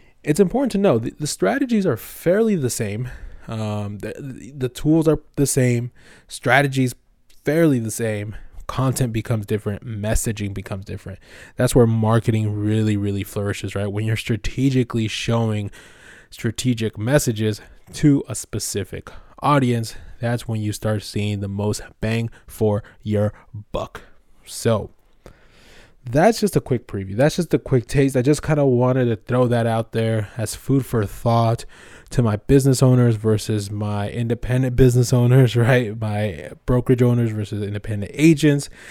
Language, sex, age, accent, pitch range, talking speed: English, male, 20-39, American, 105-135 Hz, 150 wpm